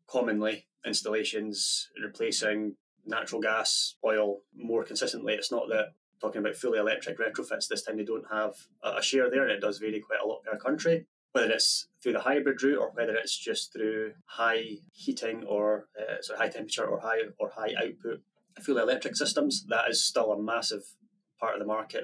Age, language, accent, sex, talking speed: 20-39, English, British, male, 190 wpm